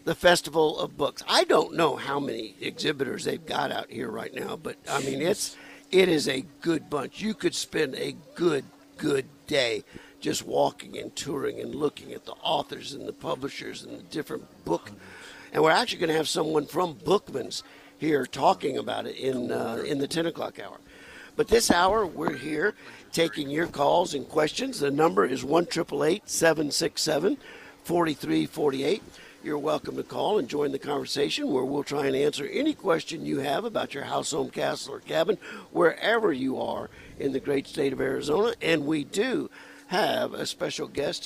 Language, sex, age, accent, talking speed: English, male, 50-69, American, 180 wpm